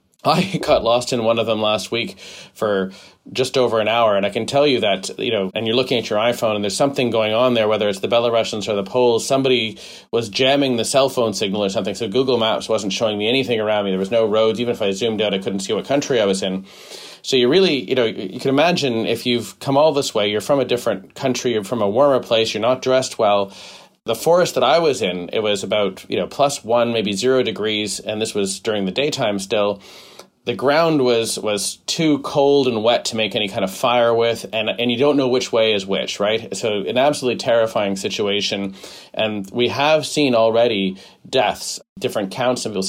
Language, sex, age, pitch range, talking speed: English, male, 30-49, 100-125 Hz, 235 wpm